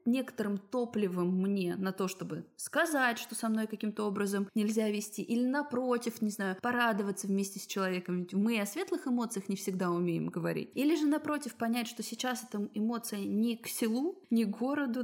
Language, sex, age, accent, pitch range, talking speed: Russian, female, 20-39, native, 200-255 Hz, 180 wpm